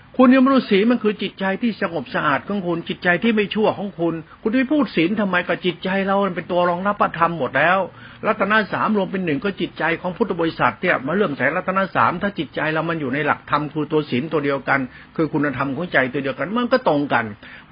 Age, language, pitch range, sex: 60-79, Thai, 160-210 Hz, male